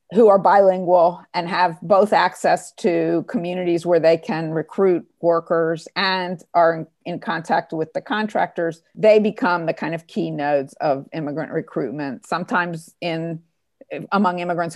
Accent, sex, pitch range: American, female, 165-215 Hz